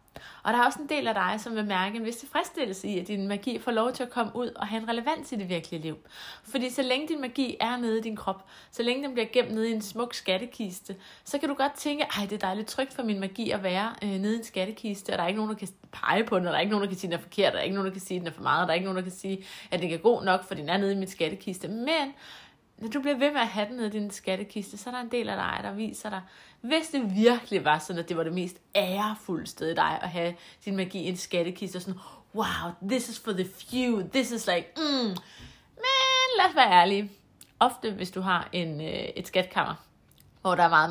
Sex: female